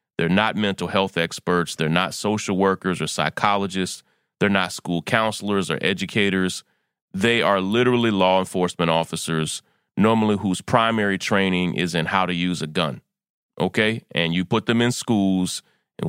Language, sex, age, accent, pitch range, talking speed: English, male, 30-49, American, 95-120 Hz, 155 wpm